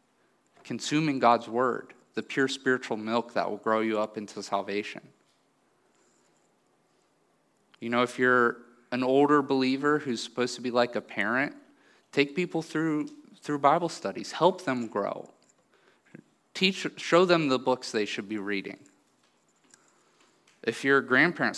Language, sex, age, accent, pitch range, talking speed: English, male, 30-49, American, 115-150 Hz, 140 wpm